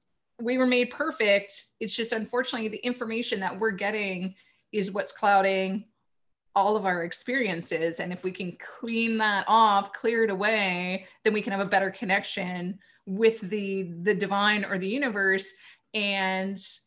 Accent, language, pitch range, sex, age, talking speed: American, English, 180-220 Hz, female, 20-39, 155 wpm